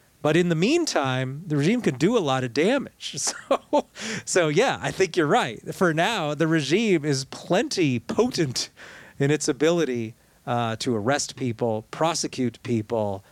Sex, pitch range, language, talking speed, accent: male, 120-145 Hz, English, 160 wpm, American